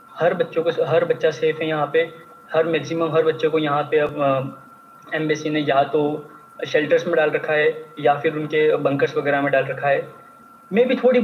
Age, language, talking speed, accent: 20-39, Hindi, 205 wpm, native